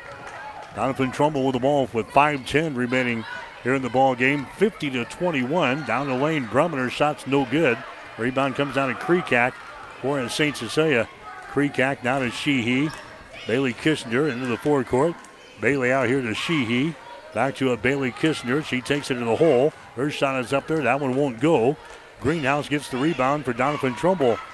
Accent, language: American, English